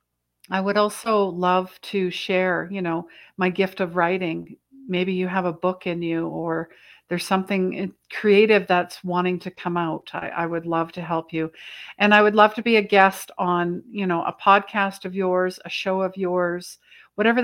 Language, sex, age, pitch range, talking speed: English, female, 50-69, 175-205 Hz, 190 wpm